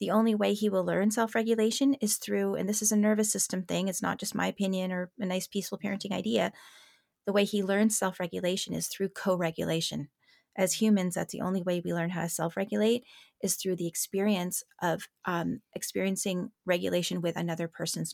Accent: American